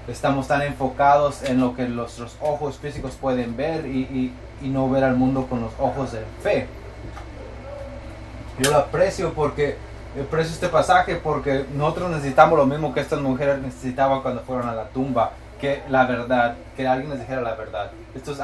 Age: 20-39